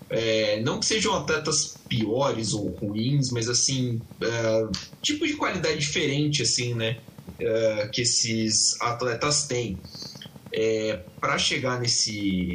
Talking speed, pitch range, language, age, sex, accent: 125 wpm, 105-135 Hz, Portuguese, 20-39, male, Brazilian